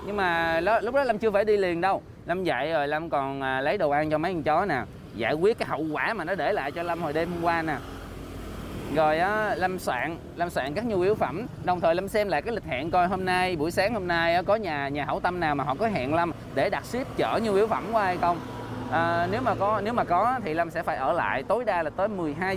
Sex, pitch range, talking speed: male, 150-200 Hz, 280 wpm